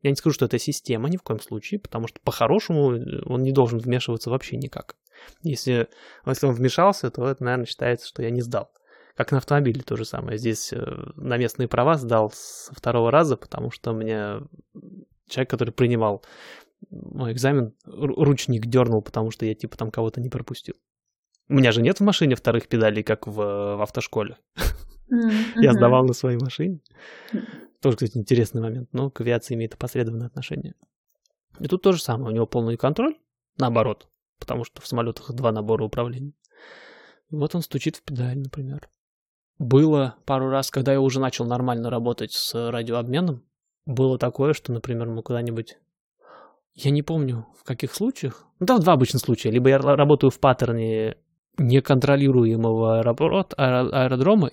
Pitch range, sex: 115-140 Hz, male